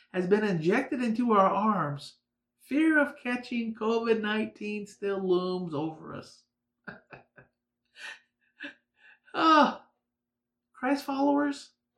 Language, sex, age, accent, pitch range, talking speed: English, male, 50-69, American, 135-230 Hz, 80 wpm